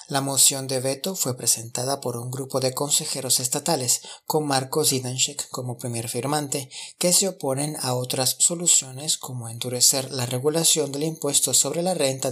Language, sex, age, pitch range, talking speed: Spanish, male, 30-49, 125-150 Hz, 160 wpm